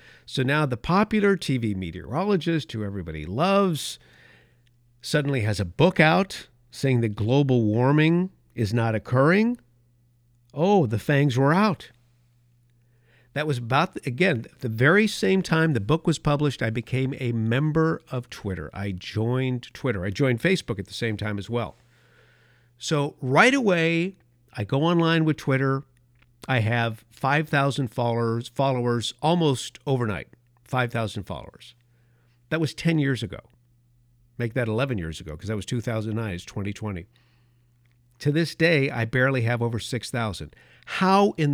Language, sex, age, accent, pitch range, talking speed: English, male, 50-69, American, 120-155 Hz, 150 wpm